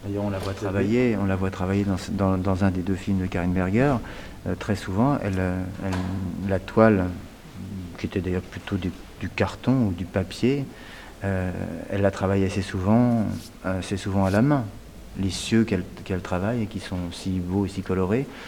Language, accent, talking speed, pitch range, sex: French, French, 190 wpm, 95-105 Hz, male